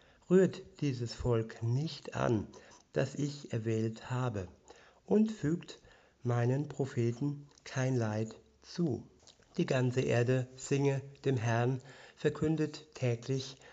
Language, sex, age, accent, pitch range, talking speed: German, male, 60-79, German, 120-145 Hz, 105 wpm